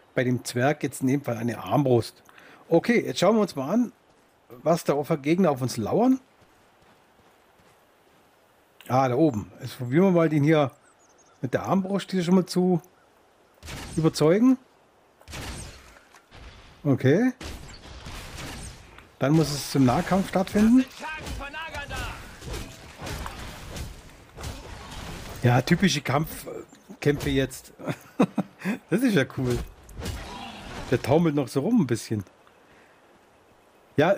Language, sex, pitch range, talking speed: German, male, 135-185 Hz, 110 wpm